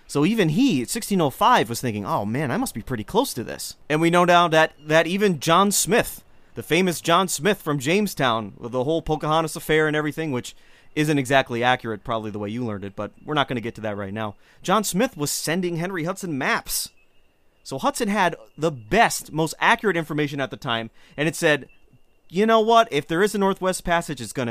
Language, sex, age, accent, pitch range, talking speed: English, male, 30-49, American, 125-170 Hz, 220 wpm